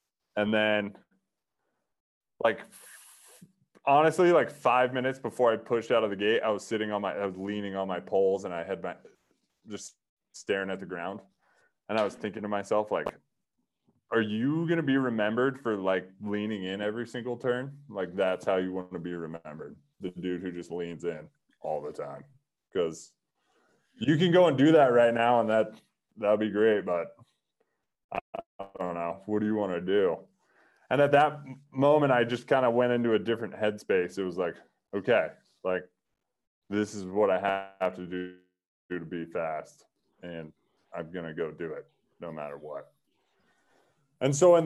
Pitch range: 95-130 Hz